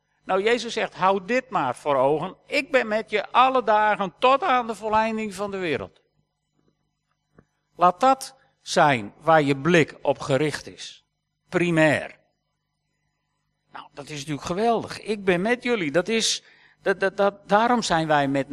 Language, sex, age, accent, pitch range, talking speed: Dutch, male, 50-69, Dutch, 145-180 Hz, 145 wpm